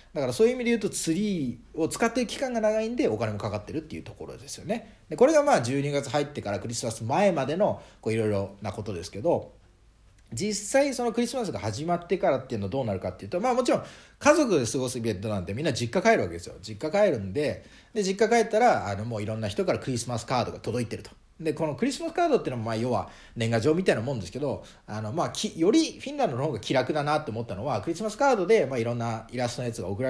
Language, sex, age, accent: Japanese, male, 40-59, native